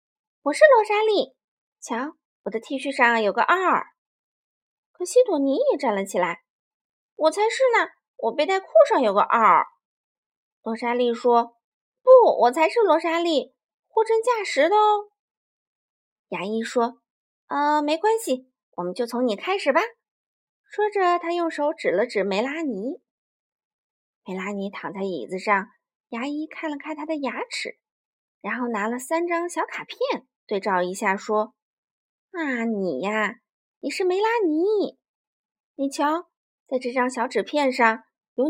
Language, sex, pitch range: Chinese, female, 235-360 Hz